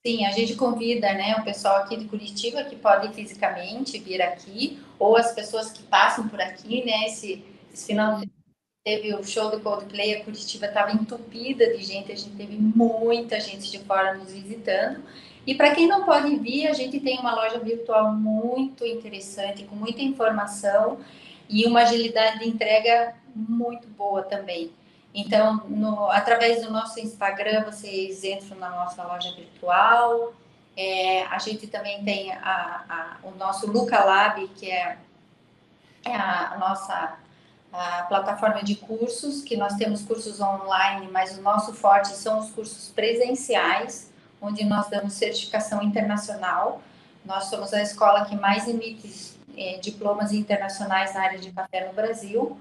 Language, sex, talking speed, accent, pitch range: Portuguese, female, 150 wpm, Brazilian, 195-225 Hz